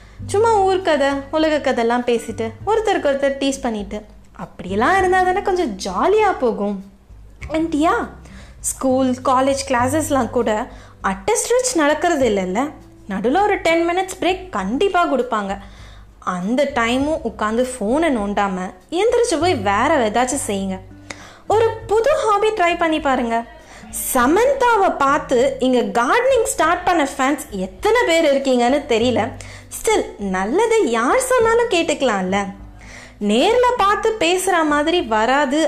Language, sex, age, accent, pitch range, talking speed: Tamil, female, 20-39, native, 225-370 Hz, 90 wpm